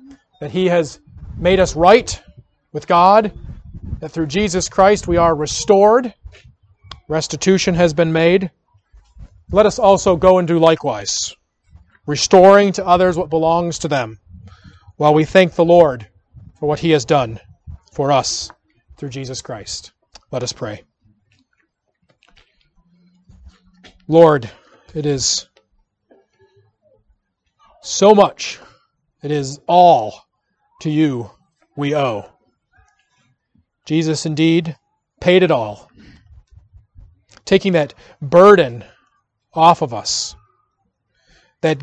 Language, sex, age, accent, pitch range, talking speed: English, male, 40-59, American, 115-175 Hz, 110 wpm